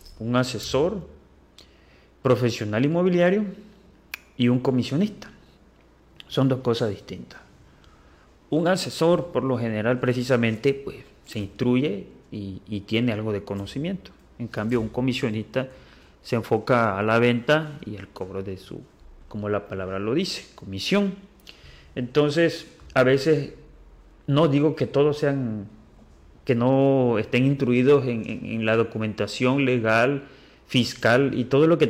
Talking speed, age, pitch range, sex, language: 130 wpm, 30-49, 105-140 Hz, male, Spanish